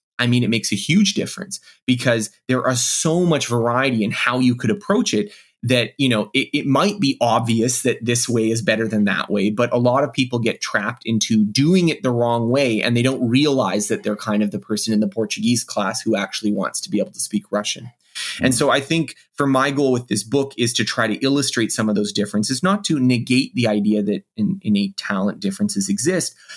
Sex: male